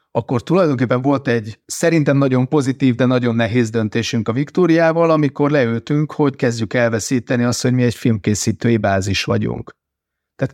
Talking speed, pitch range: 150 wpm, 120-150 Hz